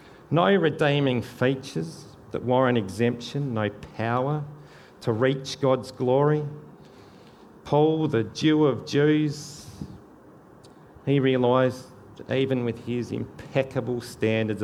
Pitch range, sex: 105-145 Hz, male